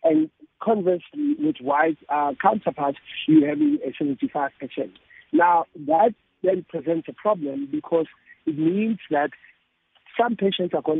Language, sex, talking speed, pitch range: English, male, 130 wpm, 150-220 Hz